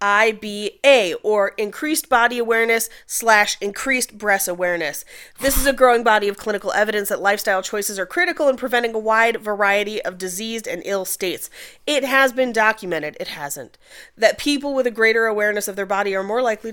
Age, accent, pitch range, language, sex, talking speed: 30-49, American, 200-255 Hz, English, female, 180 wpm